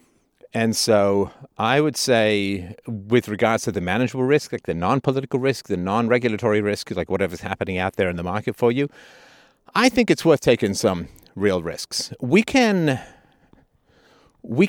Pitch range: 95-125 Hz